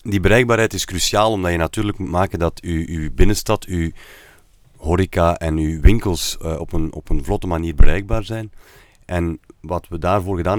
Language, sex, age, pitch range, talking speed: Dutch, male, 40-59, 85-105 Hz, 180 wpm